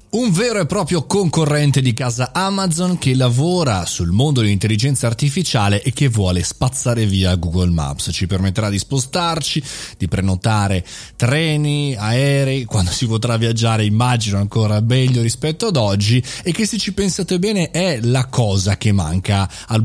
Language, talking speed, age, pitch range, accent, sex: Italian, 155 wpm, 30-49, 105-145 Hz, native, male